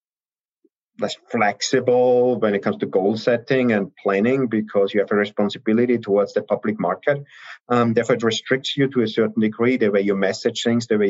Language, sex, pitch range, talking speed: English, male, 100-120 Hz, 190 wpm